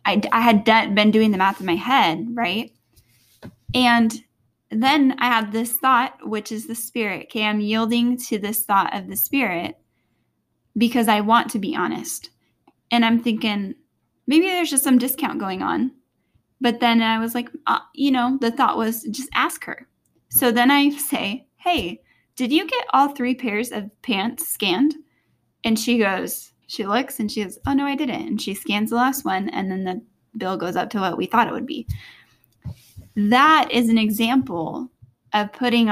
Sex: female